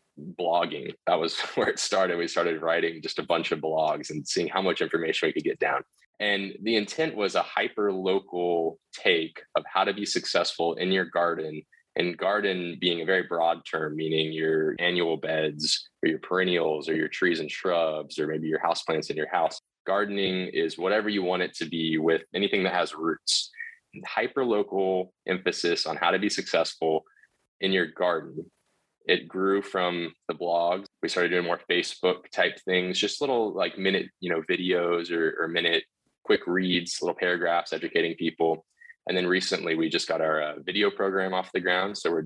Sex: male